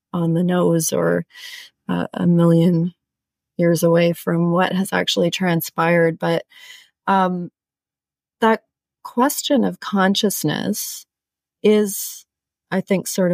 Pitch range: 160-190 Hz